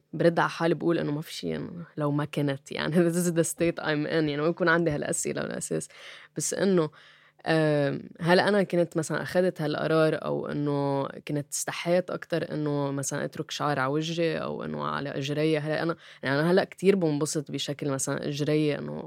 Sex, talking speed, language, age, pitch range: female, 185 wpm, Arabic, 10-29, 145-175 Hz